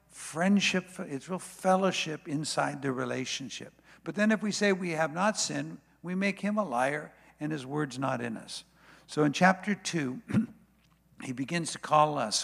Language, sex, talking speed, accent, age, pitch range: English, male, 175 wpm, American, 60-79, 125-170 Hz